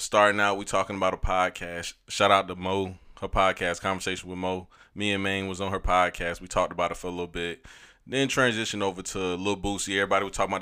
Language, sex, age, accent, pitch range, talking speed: English, male, 20-39, American, 90-100 Hz, 230 wpm